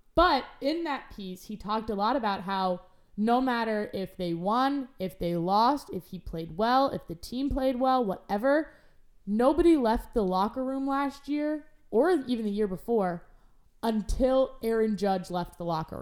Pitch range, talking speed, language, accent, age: 200-275 Hz, 170 wpm, English, American, 20-39